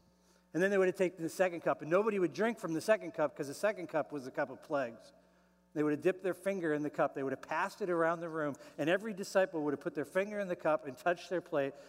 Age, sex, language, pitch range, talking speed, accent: 50-69, male, English, 145-210 Hz, 295 wpm, American